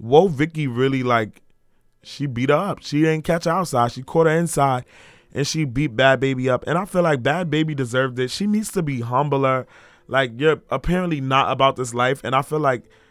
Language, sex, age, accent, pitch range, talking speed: English, male, 20-39, American, 115-145 Hz, 215 wpm